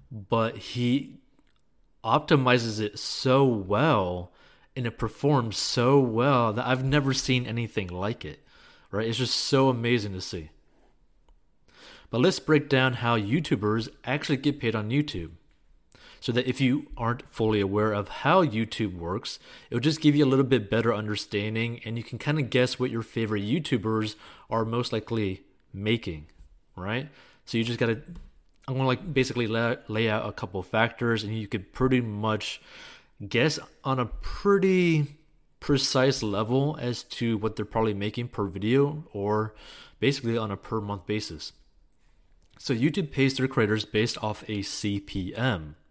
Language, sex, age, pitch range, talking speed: English, male, 30-49, 105-130 Hz, 155 wpm